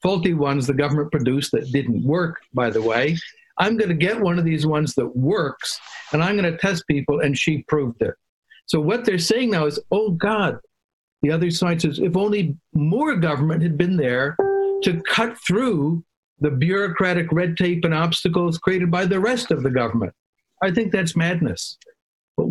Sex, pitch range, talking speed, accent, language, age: male, 145-185 Hz, 190 wpm, American, Hebrew, 60-79